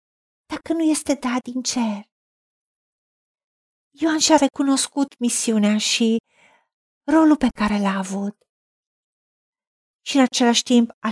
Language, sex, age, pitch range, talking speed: Romanian, female, 50-69, 225-265 Hz, 115 wpm